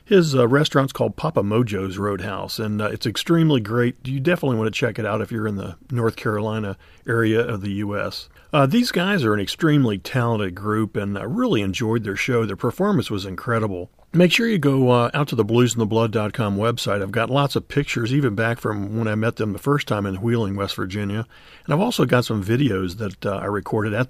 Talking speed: 220 wpm